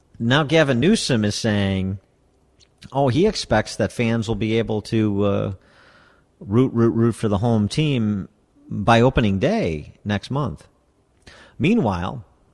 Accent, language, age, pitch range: American, English, 40-59, 95-115 Hz